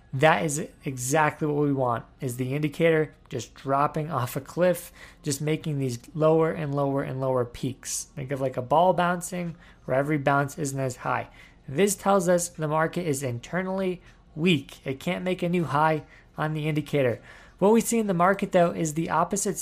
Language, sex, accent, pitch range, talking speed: English, male, American, 140-175 Hz, 190 wpm